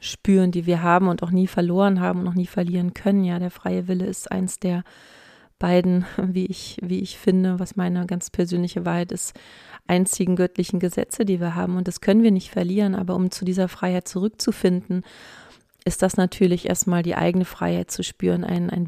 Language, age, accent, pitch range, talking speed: German, 30-49, German, 180-190 Hz, 195 wpm